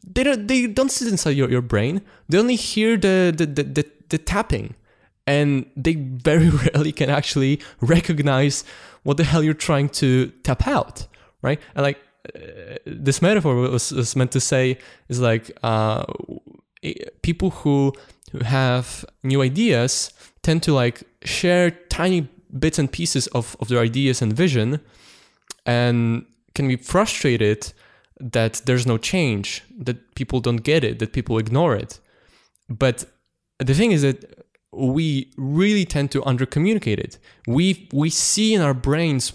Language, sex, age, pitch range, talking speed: English, male, 20-39, 120-160 Hz, 155 wpm